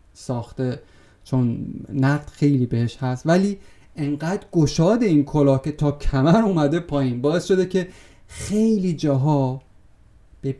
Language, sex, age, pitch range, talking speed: Persian, male, 30-49, 140-205 Hz, 120 wpm